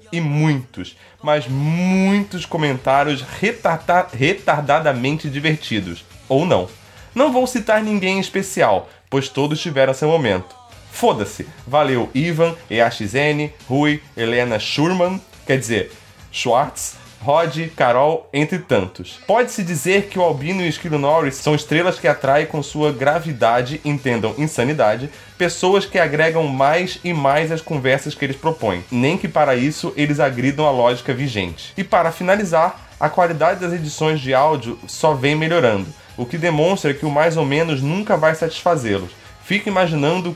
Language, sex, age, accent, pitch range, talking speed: Portuguese, male, 20-39, Brazilian, 135-170 Hz, 145 wpm